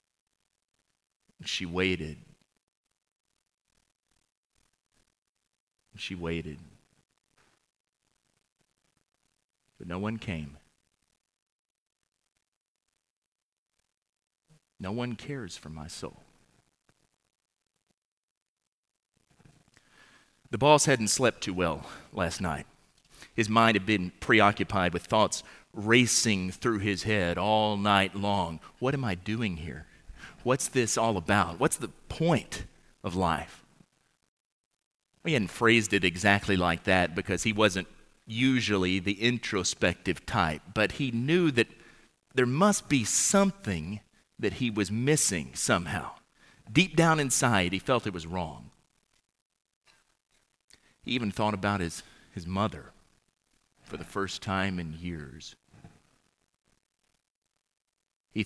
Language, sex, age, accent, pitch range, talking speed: English, male, 40-59, American, 90-115 Hz, 100 wpm